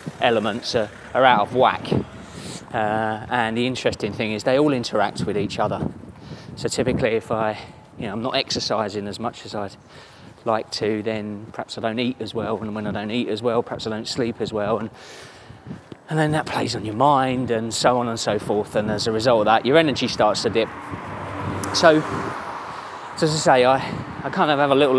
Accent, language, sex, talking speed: British, English, male, 220 wpm